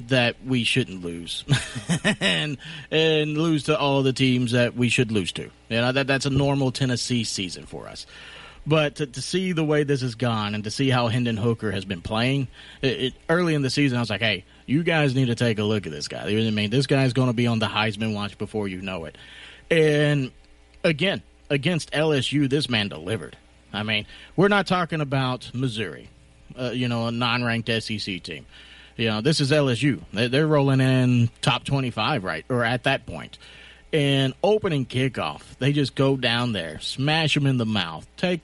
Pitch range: 110-145 Hz